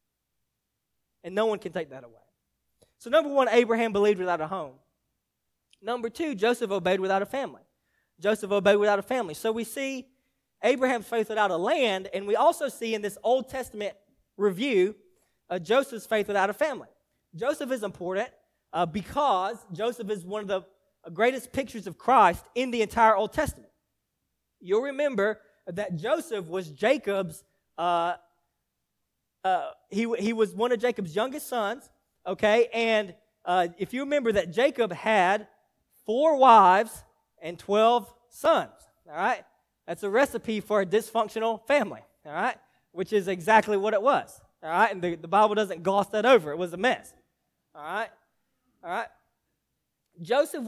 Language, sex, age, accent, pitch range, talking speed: English, male, 20-39, American, 195-255 Hz, 160 wpm